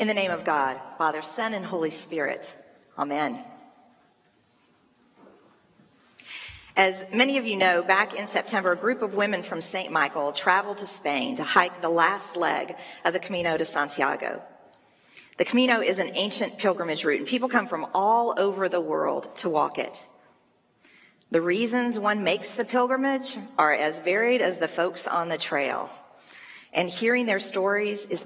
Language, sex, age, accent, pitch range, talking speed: English, female, 40-59, American, 175-220 Hz, 165 wpm